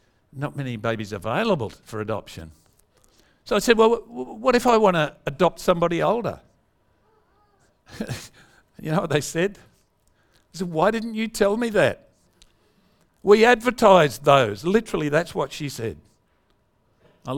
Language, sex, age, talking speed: English, male, 50-69, 140 wpm